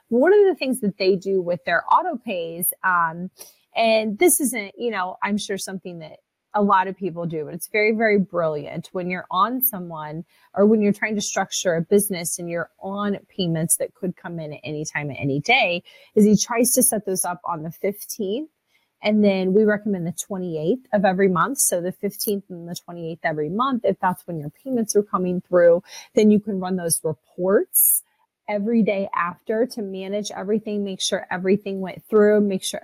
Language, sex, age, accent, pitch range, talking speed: English, female, 30-49, American, 175-210 Hz, 205 wpm